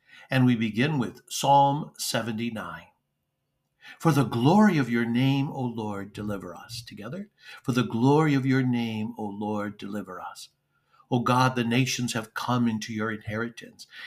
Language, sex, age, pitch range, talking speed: English, male, 60-79, 115-135 Hz, 155 wpm